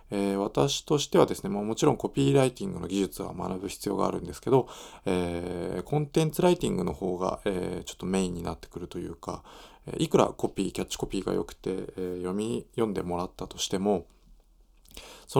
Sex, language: male, Japanese